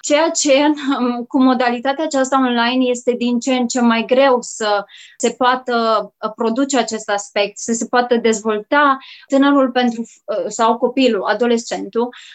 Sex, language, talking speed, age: female, Romanian, 130 wpm, 20-39